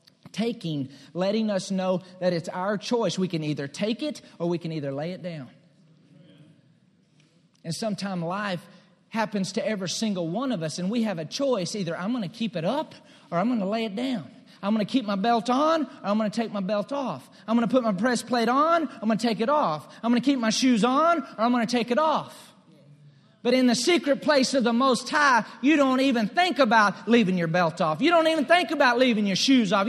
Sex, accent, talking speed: male, American, 240 wpm